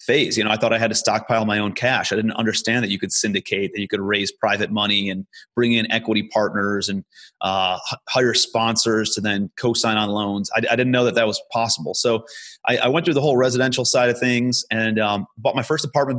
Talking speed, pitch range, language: 235 wpm, 105-130 Hz, English